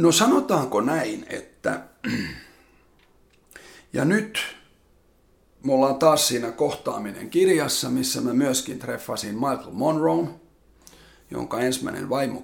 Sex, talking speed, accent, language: male, 100 wpm, native, Finnish